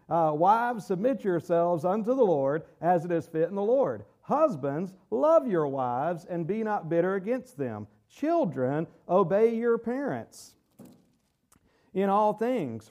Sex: male